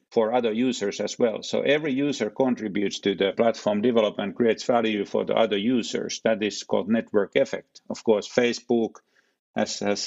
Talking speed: 175 wpm